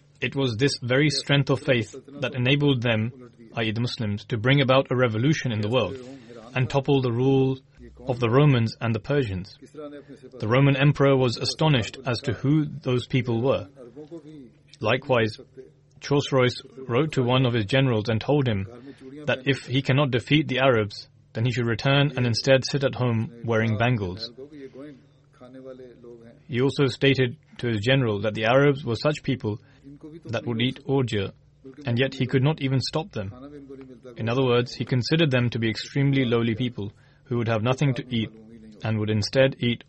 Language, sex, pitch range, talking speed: English, male, 120-140 Hz, 175 wpm